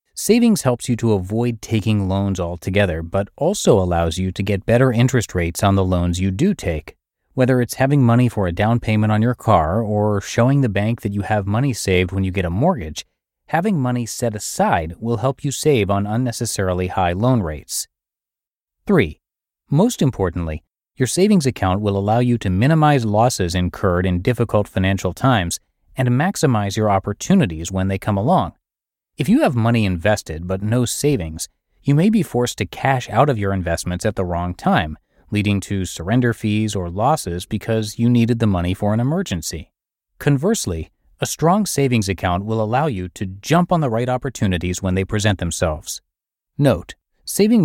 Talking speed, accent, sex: 180 wpm, American, male